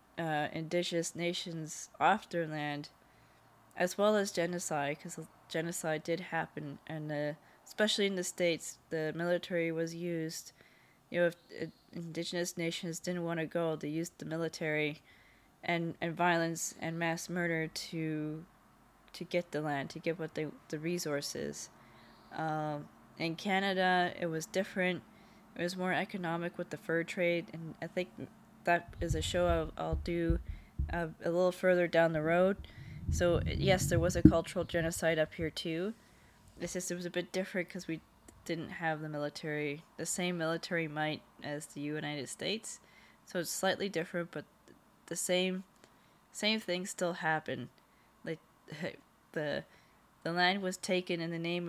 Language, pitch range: English, 155-180 Hz